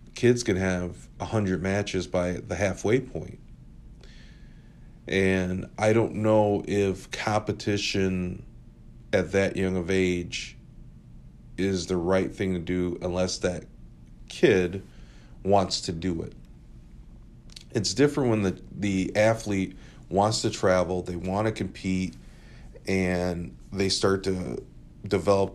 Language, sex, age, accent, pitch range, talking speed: English, male, 40-59, American, 90-100 Hz, 120 wpm